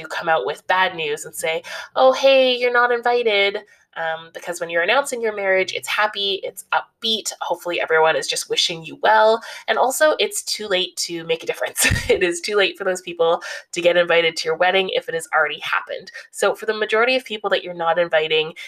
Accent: American